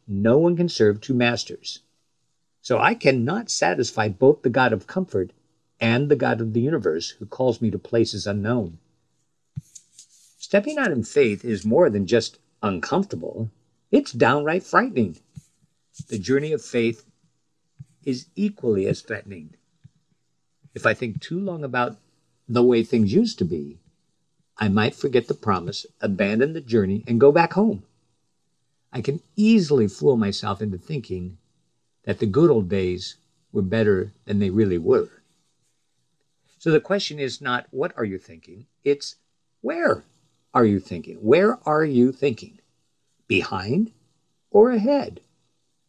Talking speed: 145 wpm